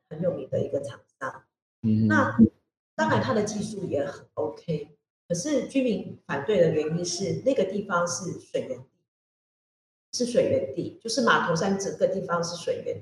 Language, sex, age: Chinese, female, 40-59